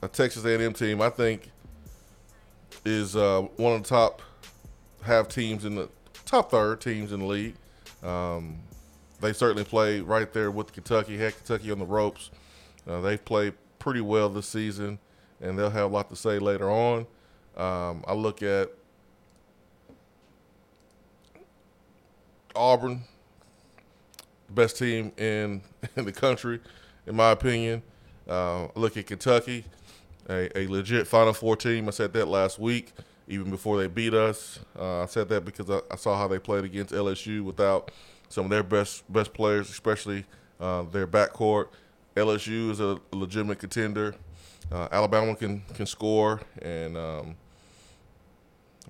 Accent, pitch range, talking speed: American, 95-110 Hz, 155 wpm